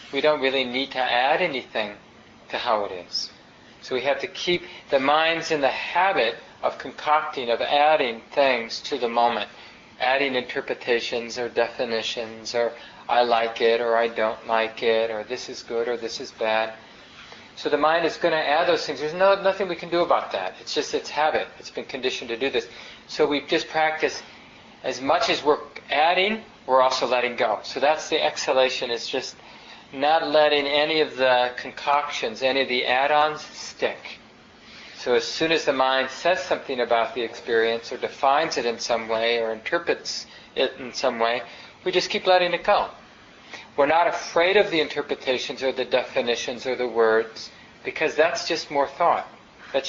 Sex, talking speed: male, 185 wpm